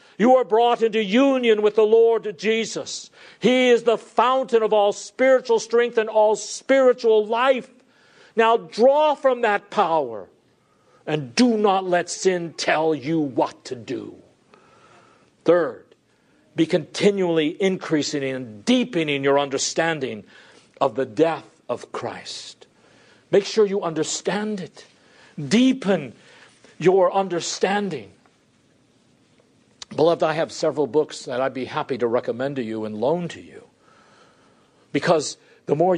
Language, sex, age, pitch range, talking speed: English, male, 50-69, 145-215 Hz, 130 wpm